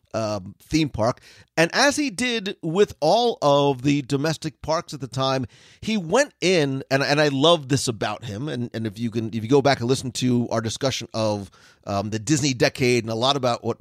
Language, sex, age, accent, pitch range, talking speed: English, male, 40-59, American, 120-175 Hz, 215 wpm